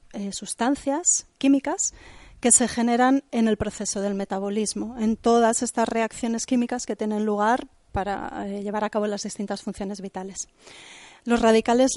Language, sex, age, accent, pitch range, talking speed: Spanish, female, 30-49, Spanish, 210-250 Hz, 150 wpm